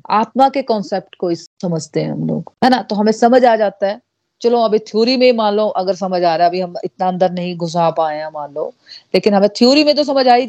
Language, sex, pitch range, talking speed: Hindi, female, 175-215 Hz, 255 wpm